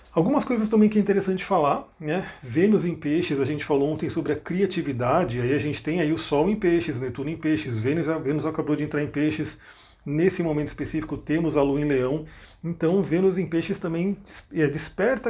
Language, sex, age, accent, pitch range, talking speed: Portuguese, male, 40-59, Brazilian, 145-185 Hz, 205 wpm